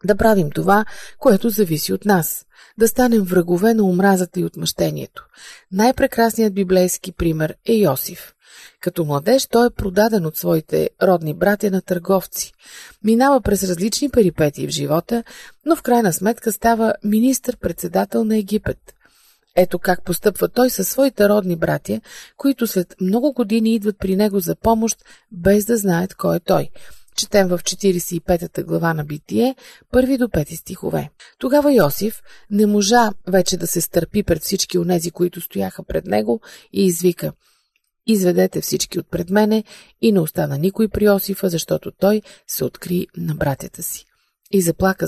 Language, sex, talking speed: Bulgarian, female, 155 wpm